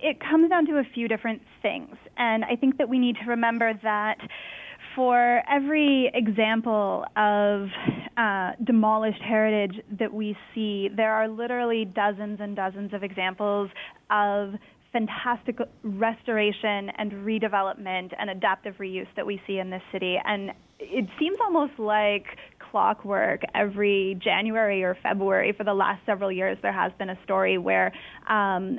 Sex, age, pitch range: female, 10-29, 200-235 Hz